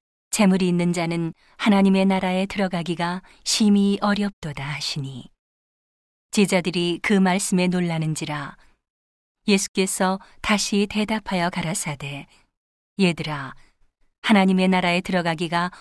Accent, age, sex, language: native, 40-59, female, Korean